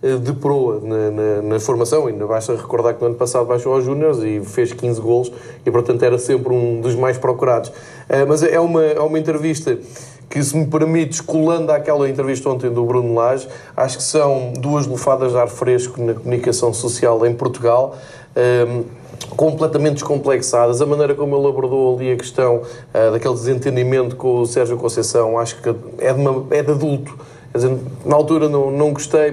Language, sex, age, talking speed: Portuguese, male, 20-39, 175 wpm